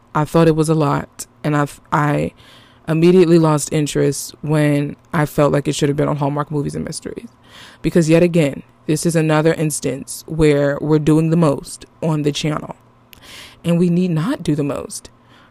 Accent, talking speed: American, 180 wpm